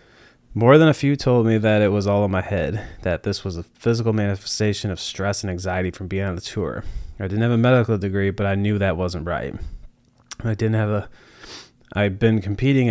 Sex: male